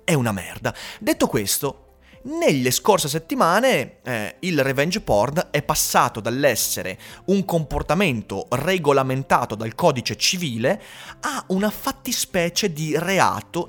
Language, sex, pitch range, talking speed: Italian, male, 110-170 Hz, 110 wpm